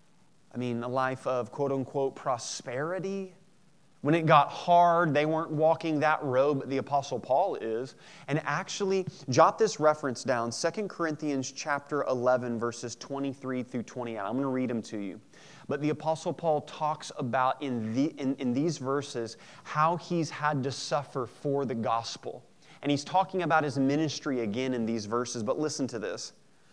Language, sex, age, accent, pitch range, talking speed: English, male, 30-49, American, 130-175 Hz, 170 wpm